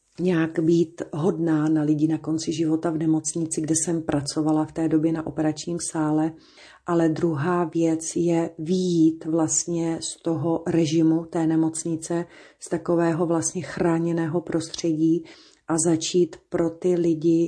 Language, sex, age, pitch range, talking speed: Slovak, female, 40-59, 160-170 Hz, 135 wpm